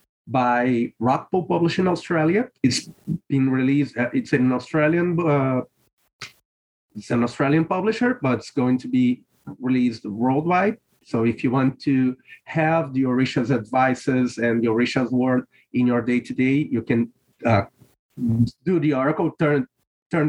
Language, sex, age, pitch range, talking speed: English, male, 30-49, 125-150 Hz, 135 wpm